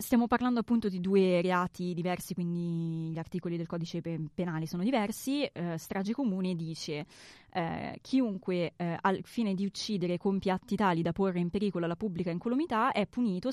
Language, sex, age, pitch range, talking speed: Italian, female, 20-39, 170-215 Hz, 165 wpm